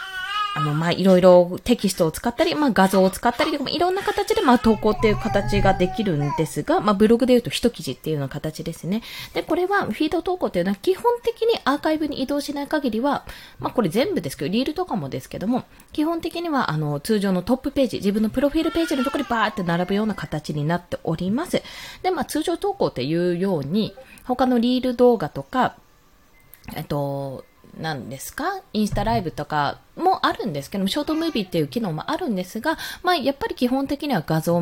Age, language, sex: 20-39, Japanese, female